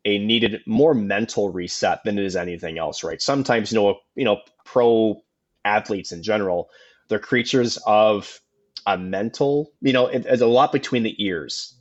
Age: 20-39